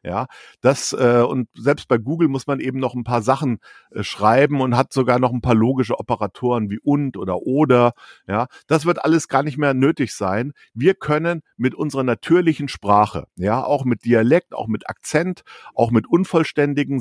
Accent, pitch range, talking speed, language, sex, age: German, 115-145 Hz, 180 wpm, German, male, 50-69